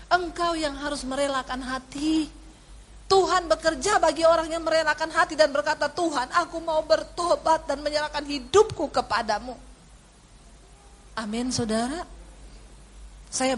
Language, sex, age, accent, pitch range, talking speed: English, female, 40-59, Indonesian, 215-320 Hz, 110 wpm